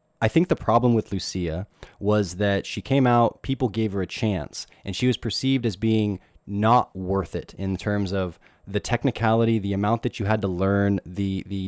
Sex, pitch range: male, 95-115 Hz